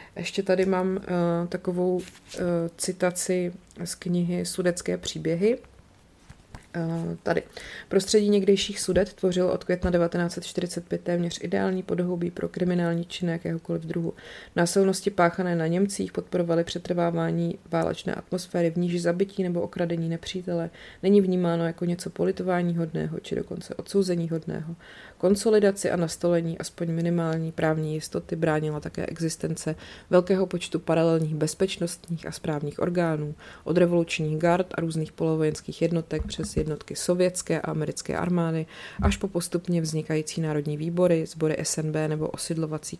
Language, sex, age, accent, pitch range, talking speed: Czech, female, 30-49, native, 160-180 Hz, 125 wpm